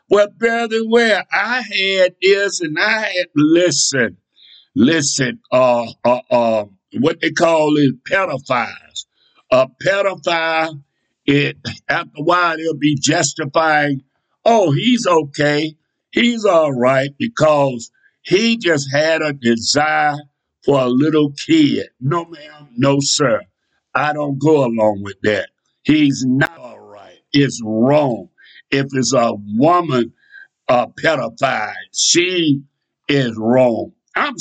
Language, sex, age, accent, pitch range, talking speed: English, male, 60-79, American, 135-185 Hz, 120 wpm